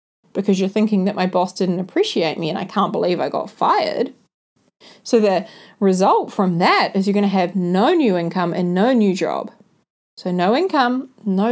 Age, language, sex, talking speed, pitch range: 30-49, English, female, 195 wpm, 195-255 Hz